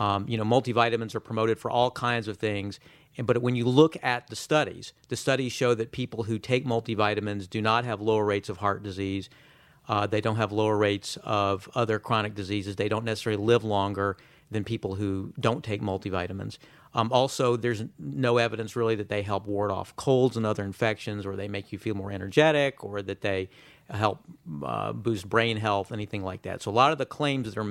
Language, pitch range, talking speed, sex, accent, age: English, 105-125 Hz, 210 wpm, male, American, 40-59